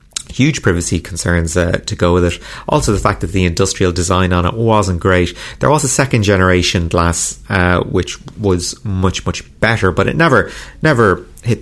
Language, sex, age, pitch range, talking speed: English, male, 30-49, 90-115 Hz, 180 wpm